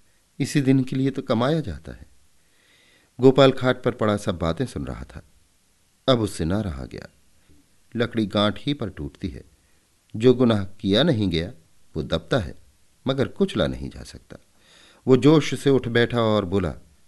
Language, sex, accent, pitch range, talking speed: Hindi, male, native, 85-125 Hz, 170 wpm